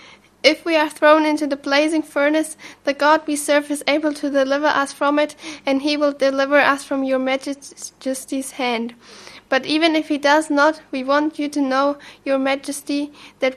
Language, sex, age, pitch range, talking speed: English, female, 10-29, 260-285 Hz, 185 wpm